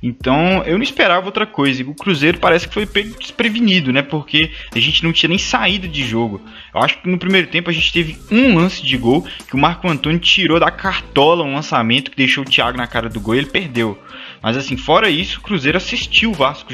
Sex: male